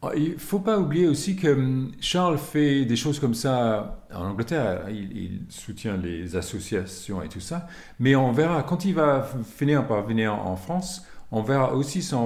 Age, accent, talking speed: 40-59, French, 185 wpm